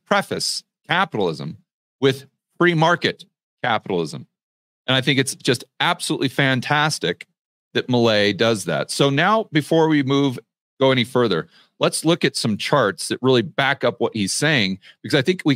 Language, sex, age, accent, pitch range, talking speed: English, male, 40-59, American, 130-175 Hz, 160 wpm